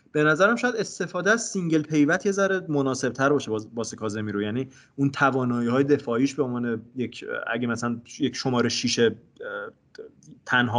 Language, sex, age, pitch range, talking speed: English, male, 20-39, 110-140 Hz, 155 wpm